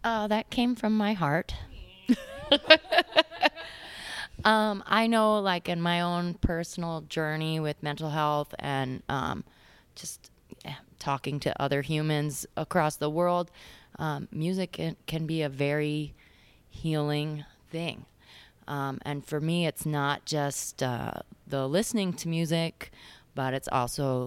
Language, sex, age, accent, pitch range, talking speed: English, female, 20-39, American, 135-175 Hz, 135 wpm